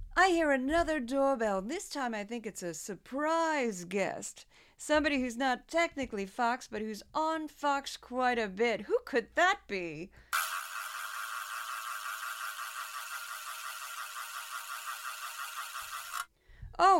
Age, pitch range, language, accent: 40-59, 200-295 Hz, English, American